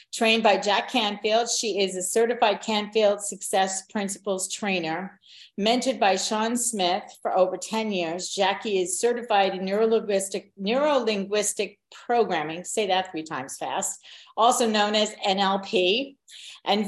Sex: female